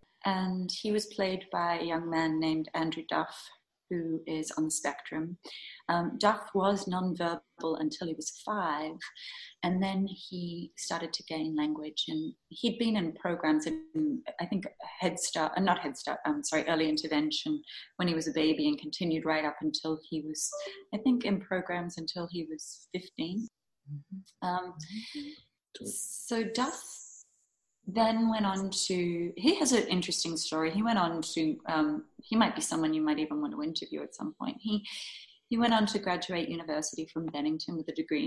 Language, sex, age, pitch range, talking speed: English, female, 30-49, 160-230 Hz, 170 wpm